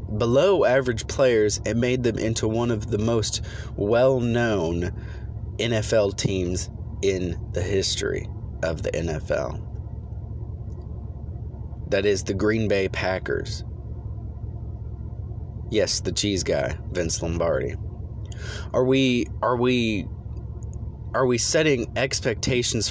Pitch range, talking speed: 100-110 Hz, 105 wpm